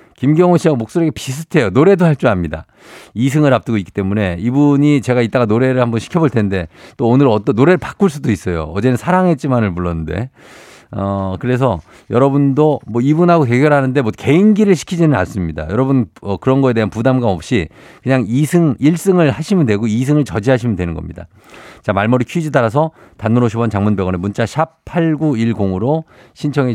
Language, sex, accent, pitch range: Korean, male, native, 105-145 Hz